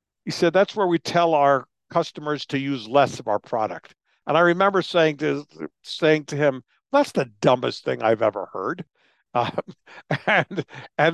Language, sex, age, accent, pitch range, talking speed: English, male, 50-69, American, 135-175 Hz, 165 wpm